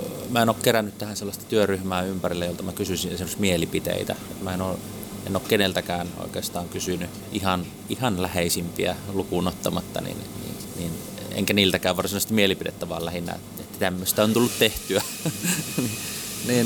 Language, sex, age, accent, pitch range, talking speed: Finnish, male, 30-49, native, 90-105 Hz, 150 wpm